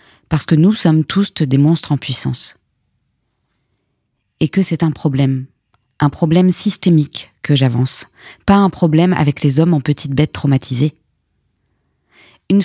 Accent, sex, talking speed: French, female, 140 wpm